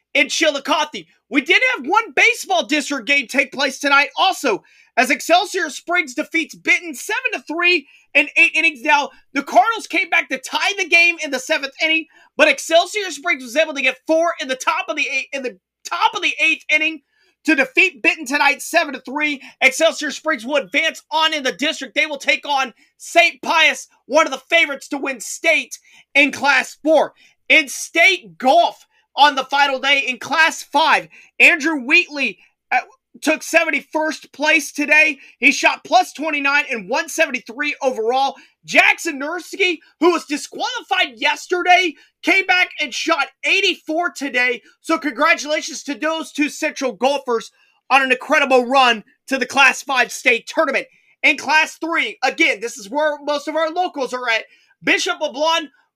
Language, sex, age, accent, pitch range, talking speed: English, male, 30-49, American, 275-335 Hz, 170 wpm